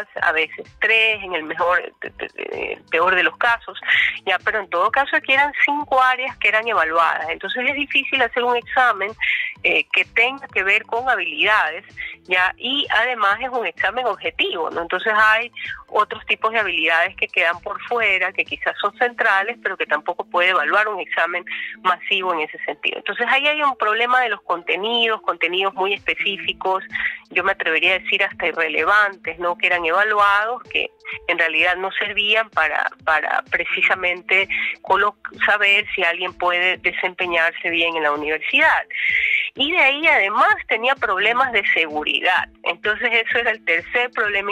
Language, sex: Spanish, female